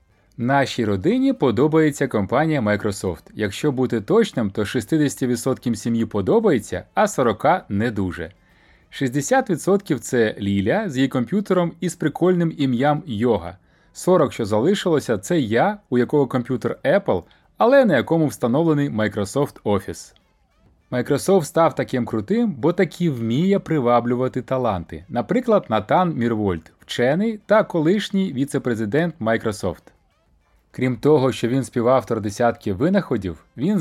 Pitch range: 105-160 Hz